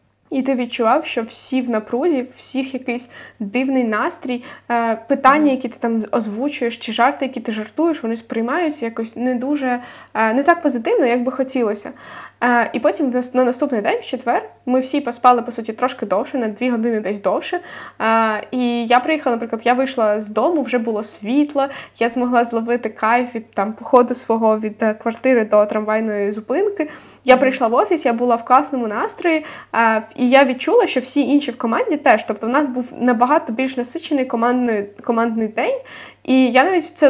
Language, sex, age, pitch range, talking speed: Ukrainian, female, 10-29, 230-285 Hz, 170 wpm